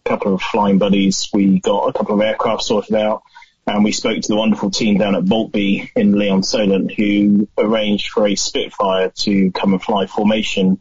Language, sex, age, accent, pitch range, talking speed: English, male, 20-39, British, 95-105 Hz, 195 wpm